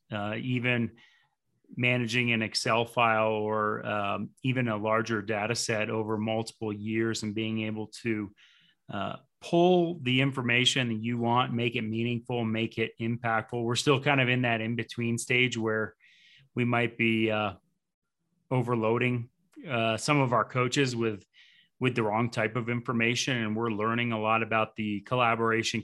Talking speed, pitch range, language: 155 wpm, 110-125 Hz, English